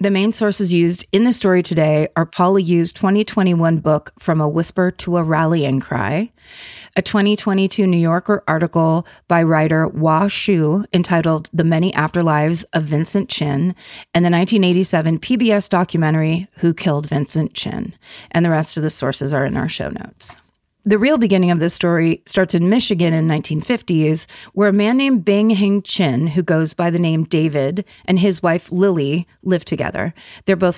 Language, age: English, 30-49